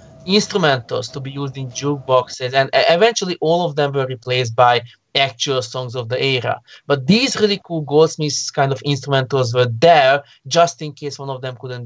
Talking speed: 180 wpm